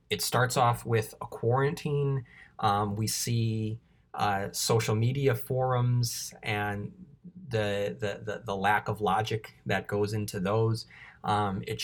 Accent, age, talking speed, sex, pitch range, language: American, 20-39, 135 wpm, male, 105-120 Hz, English